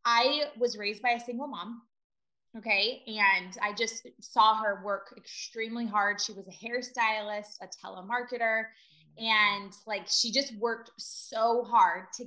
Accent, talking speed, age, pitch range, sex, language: American, 145 wpm, 20-39, 200-245 Hz, female, English